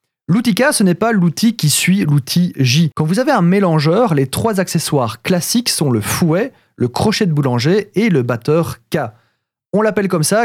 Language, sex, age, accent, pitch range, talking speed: French, male, 30-49, French, 140-195 Hz, 195 wpm